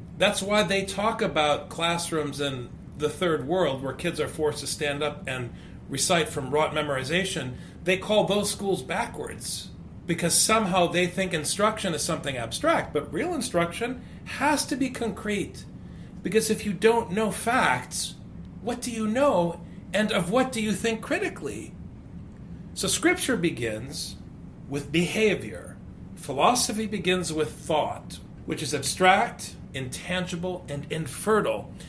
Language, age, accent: English, 40-59, American